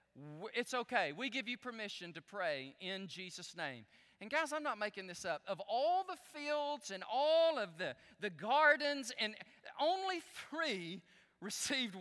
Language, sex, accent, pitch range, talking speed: English, male, American, 165-250 Hz, 160 wpm